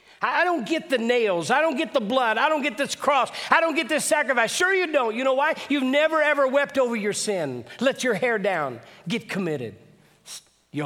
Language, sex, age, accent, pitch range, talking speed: English, male, 50-69, American, 115-170 Hz, 220 wpm